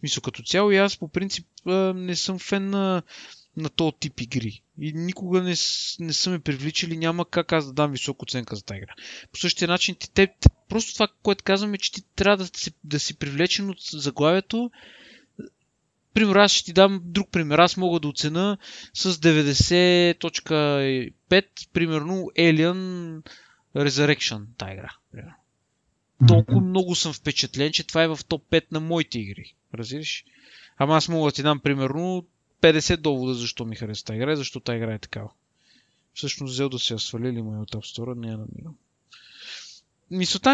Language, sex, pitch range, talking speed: Bulgarian, male, 135-185 Hz, 170 wpm